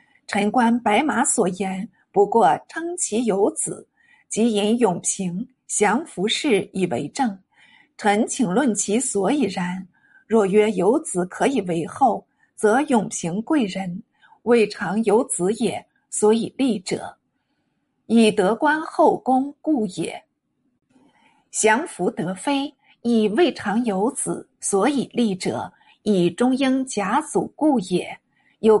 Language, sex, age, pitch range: Chinese, female, 50-69, 200-270 Hz